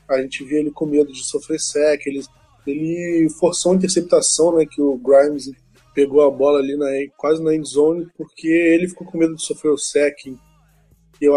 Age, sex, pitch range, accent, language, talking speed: 20-39, male, 140-160 Hz, Brazilian, Portuguese, 195 wpm